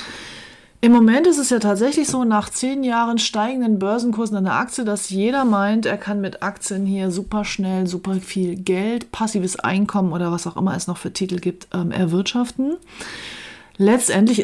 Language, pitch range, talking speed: German, 180-220 Hz, 170 wpm